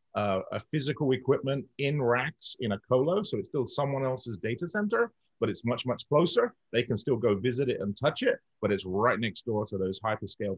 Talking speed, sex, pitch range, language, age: 215 wpm, male, 105-130 Hz, English, 40-59